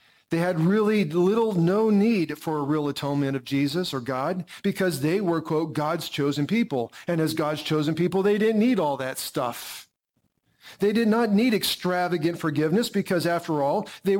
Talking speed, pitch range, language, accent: 180 wpm, 145-195 Hz, English, American